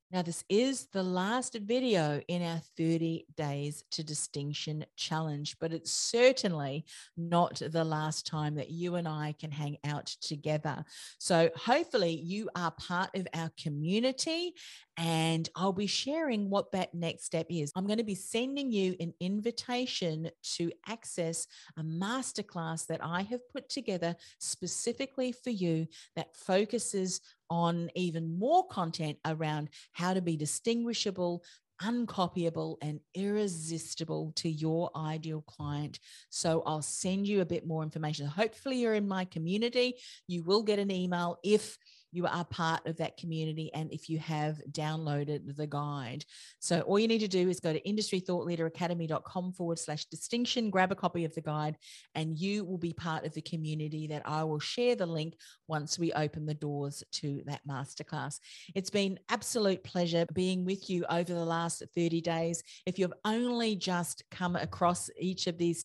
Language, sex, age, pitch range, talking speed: English, female, 40-59, 155-195 Hz, 160 wpm